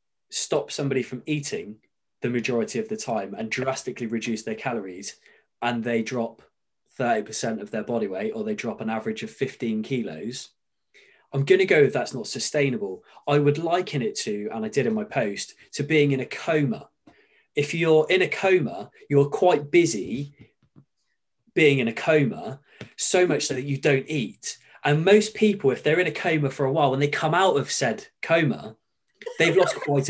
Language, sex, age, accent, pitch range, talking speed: English, male, 20-39, British, 130-195 Hz, 185 wpm